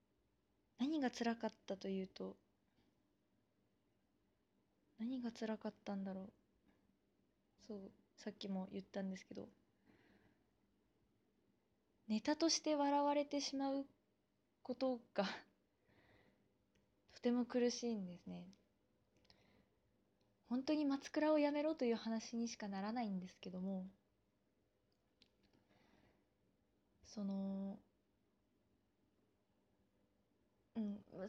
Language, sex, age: Japanese, female, 20-39